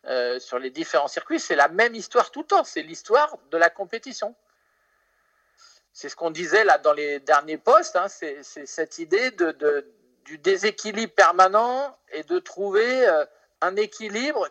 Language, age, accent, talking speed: French, 50-69, French, 175 wpm